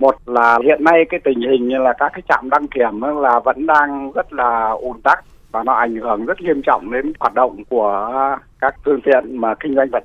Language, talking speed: Vietnamese, 235 wpm